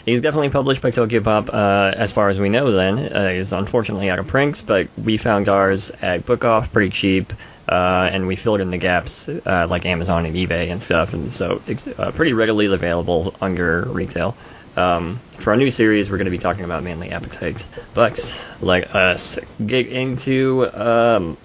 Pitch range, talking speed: 90-110 Hz, 195 wpm